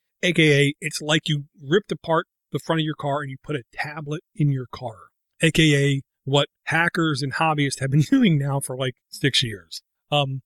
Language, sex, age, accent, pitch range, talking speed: English, male, 40-59, American, 140-165 Hz, 190 wpm